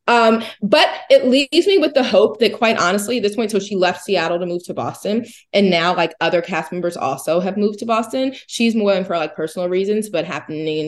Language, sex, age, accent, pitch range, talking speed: English, female, 20-39, American, 155-225 Hz, 230 wpm